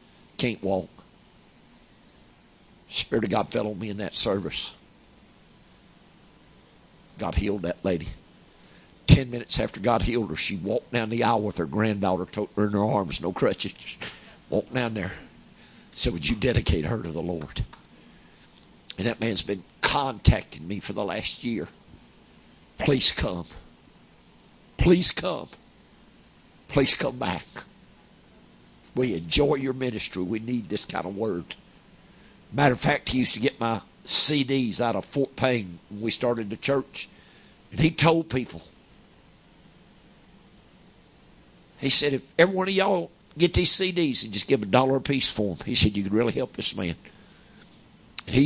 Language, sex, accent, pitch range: English, male, American, 100-135 Hz